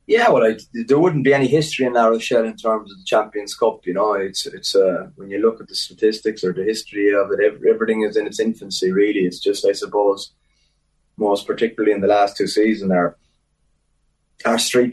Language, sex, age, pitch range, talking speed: English, male, 20-39, 100-120 Hz, 215 wpm